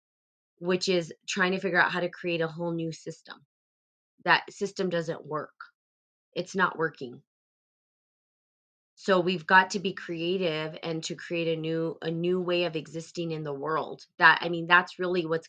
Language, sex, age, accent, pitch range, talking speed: English, female, 20-39, American, 155-180 Hz, 175 wpm